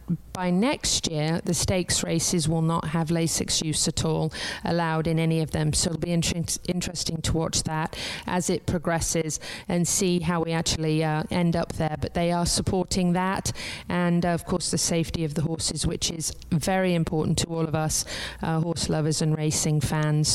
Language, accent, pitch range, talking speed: English, British, 165-190 Hz, 195 wpm